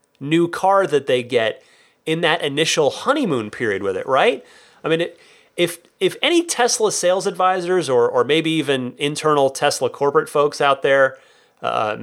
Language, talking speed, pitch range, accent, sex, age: English, 165 wpm, 130-205 Hz, American, male, 30-49